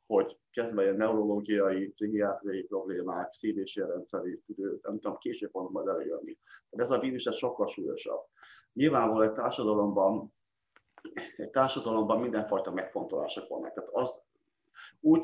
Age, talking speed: 30-49, 115 wpm